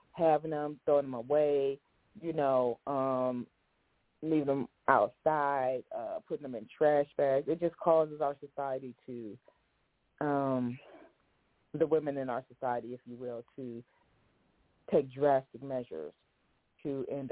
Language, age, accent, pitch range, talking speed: English, 30-49, American, 130-155 Hz, 130 wpm